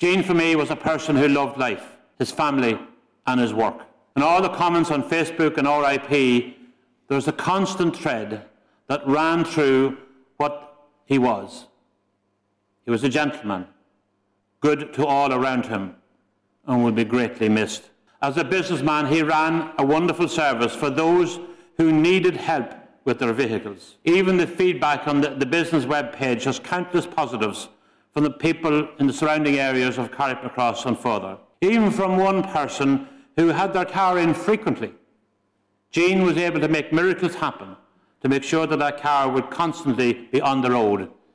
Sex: male